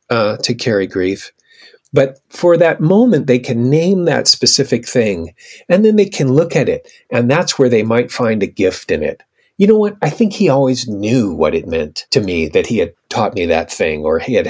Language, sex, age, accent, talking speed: English, male, 40-59, American, 225 wpm